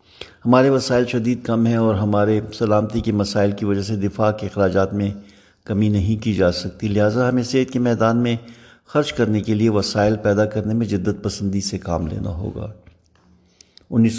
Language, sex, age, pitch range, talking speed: Urdu, male, 60-79, 100-115 Hz, 180 wpm